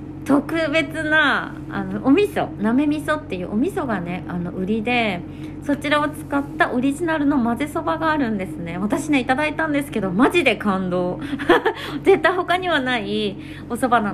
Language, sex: Japanese, female